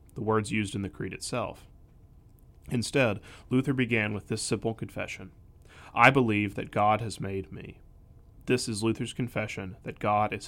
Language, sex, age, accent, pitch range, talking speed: English, male, 30-49, American, 95-120 Hz, 160 wpm